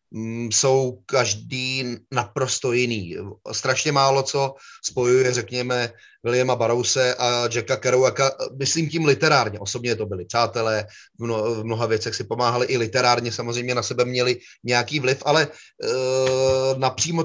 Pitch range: 120-145 Hz